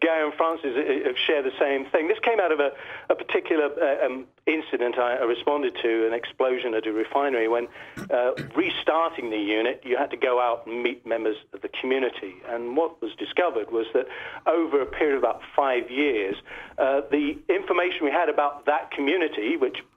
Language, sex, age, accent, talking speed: English, male, 50-69, British, 190 wpm